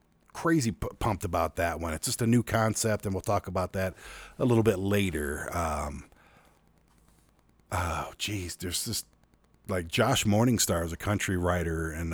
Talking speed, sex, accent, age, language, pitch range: 160 wpm, male, American, 50-69, English, 90-115 Hz